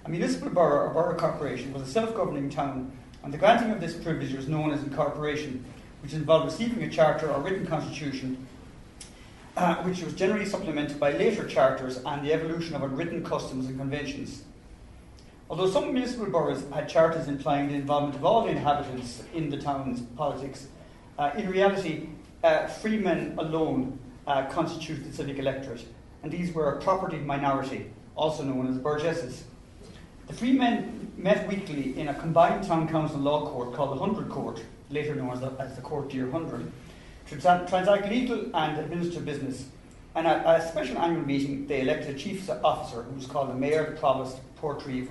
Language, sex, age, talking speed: English, male, 40-59, 175 wpm